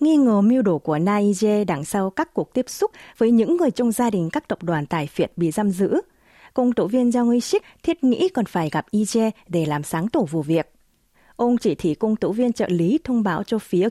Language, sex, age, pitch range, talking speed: Vietnamese, female, 20-39, 170-240 Hz, 235 wpm